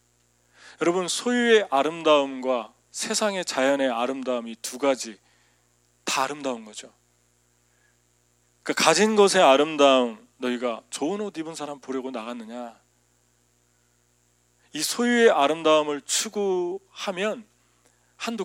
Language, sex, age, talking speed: English, male, 40-59, 90 wpm